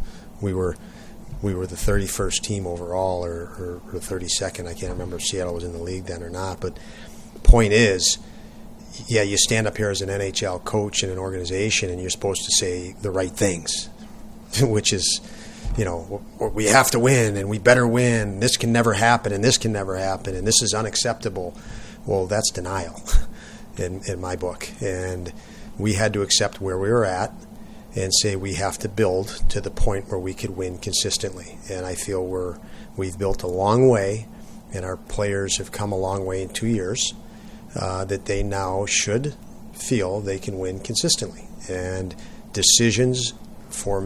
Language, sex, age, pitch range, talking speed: English, male, 40-59, 95-110 Hz, 185 wpm